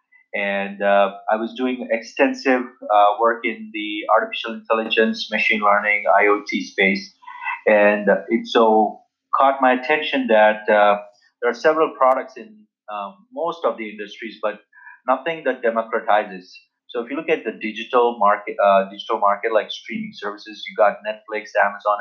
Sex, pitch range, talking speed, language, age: male, 105-130 Hz, 155 wpm, English, 30-49